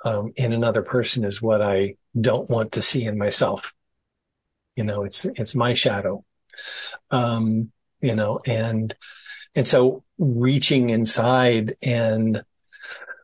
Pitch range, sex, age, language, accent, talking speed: 115-130 Hz, male, 50-69, English, American, 125 wpm